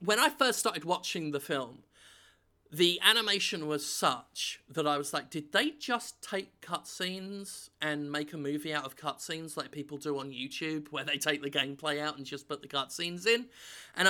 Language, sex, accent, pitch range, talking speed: English, male, British, 145-205 Hz, 190 wpm